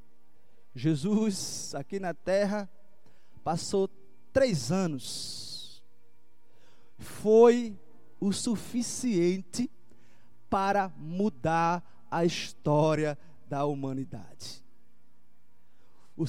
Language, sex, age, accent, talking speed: Portuguese, male, 20-39, Brazilian, 65 wpm